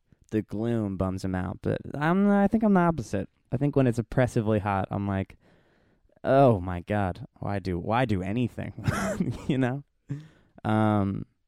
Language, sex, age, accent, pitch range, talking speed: English, male, 20-39, American, 100-130 Hz, 160 wpm